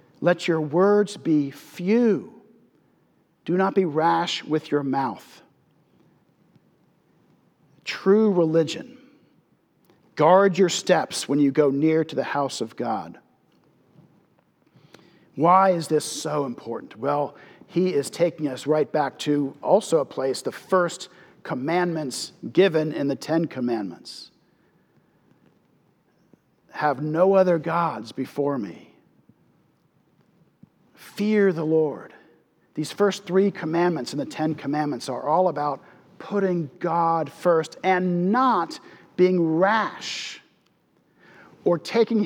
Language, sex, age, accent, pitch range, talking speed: English, male, 50-69, American, 155-190 Hz, 110 wpm